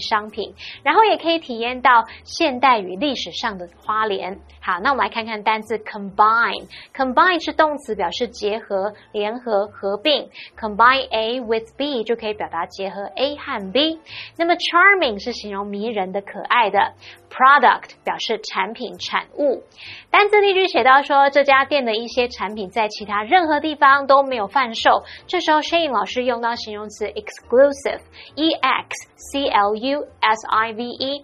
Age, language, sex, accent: 20-39, Chinese, female, American